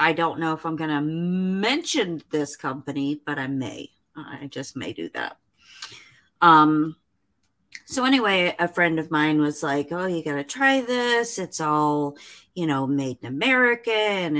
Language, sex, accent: English, female, American